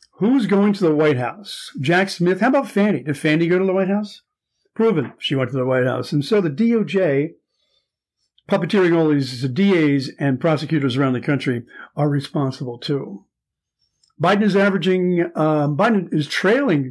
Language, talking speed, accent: English, 170 wpm, American